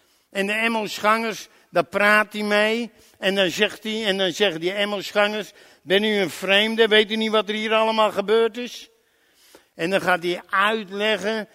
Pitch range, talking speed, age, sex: 145-210 Hz, 175 wpm, 60-79, male